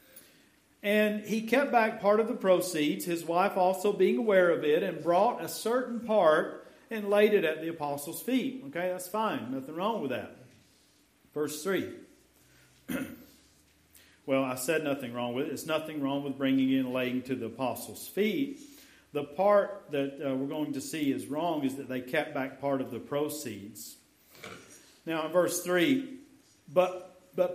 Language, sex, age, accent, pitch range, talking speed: English, male, 50-69, American, 145-215 Hz, 170 wpm